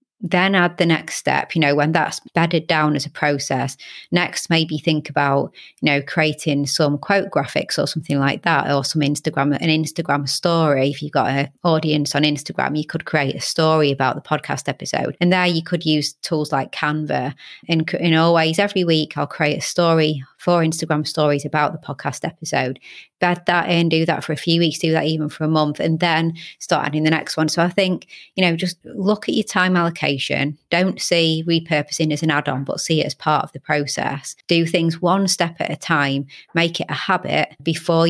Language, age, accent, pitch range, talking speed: English, 30-49, British, 145-170 Hz, 210 wpm